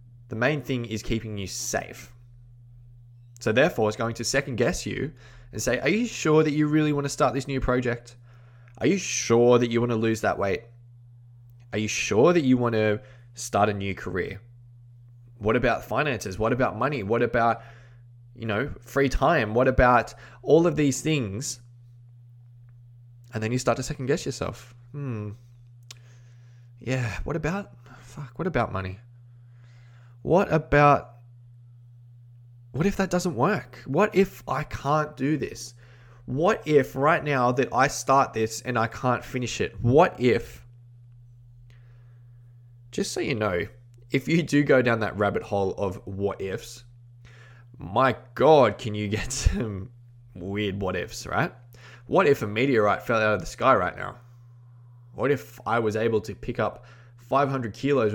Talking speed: 160 wpm